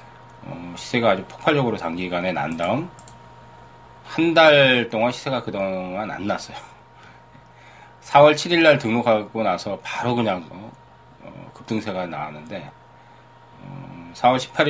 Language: Korean